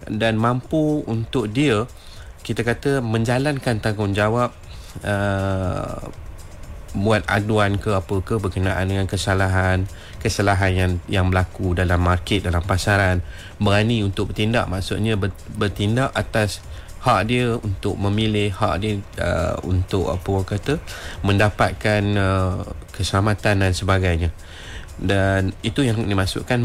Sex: male